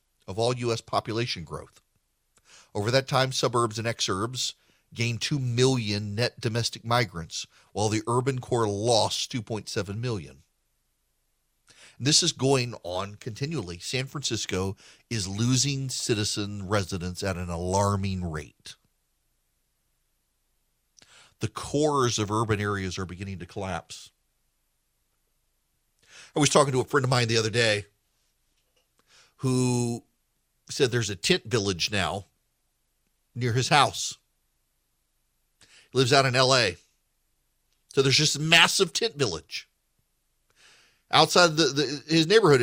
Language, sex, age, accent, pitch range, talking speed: English, male, 40-59, American, 105-135 Hz, 115 wpm